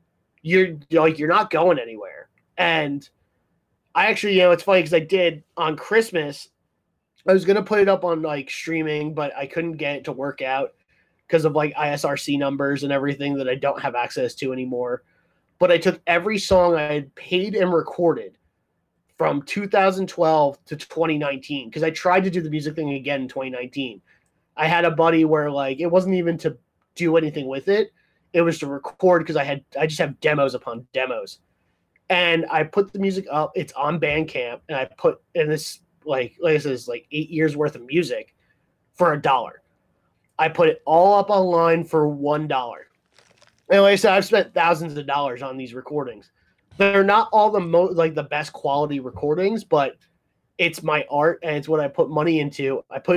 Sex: male